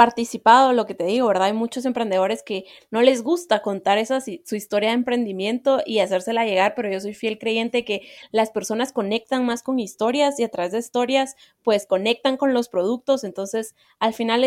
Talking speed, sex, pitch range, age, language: 195 wpm, female, 200-245 Hz, 20-39, Spanish